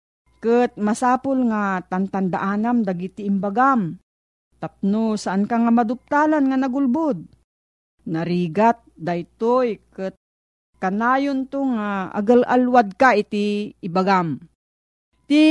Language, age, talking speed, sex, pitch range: Filipino, 40-59, 95 wpm, female, 195-255 Hz